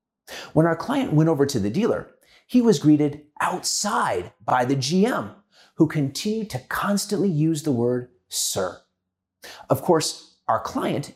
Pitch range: 120-175 Hz